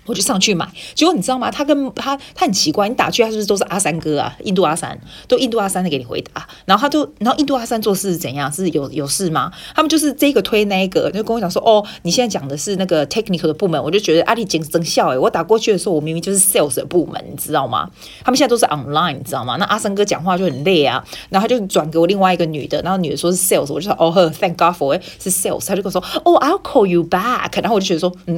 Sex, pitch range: female, 165-230 Hz